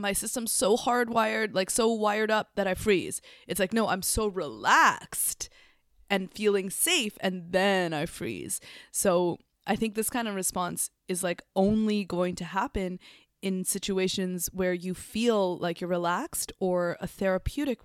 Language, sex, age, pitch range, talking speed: English, female, 20-39, 175-200 Hz, 160 wpm